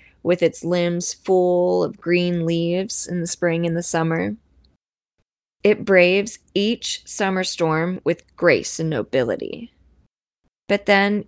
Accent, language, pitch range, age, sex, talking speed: American, English, 175-210 Hz, 20-39, female, 130 wpm